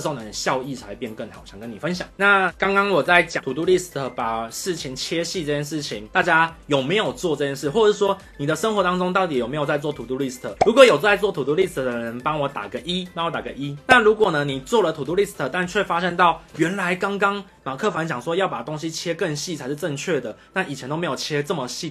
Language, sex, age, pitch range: Chinese, male, 20-39, 140-190 Hz